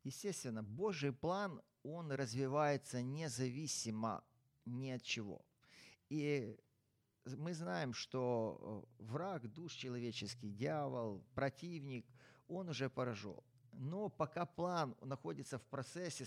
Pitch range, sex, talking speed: 115-145 Hz, male, 100 wpm